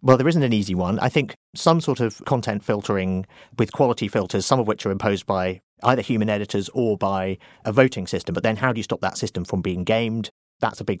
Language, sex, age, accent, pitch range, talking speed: English, male, 40-59, British, 100-135 Hz, 240 wpm